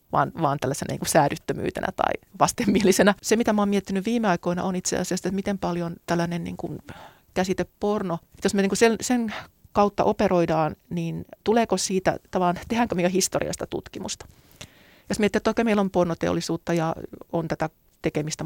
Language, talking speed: Finnish, 165 wpm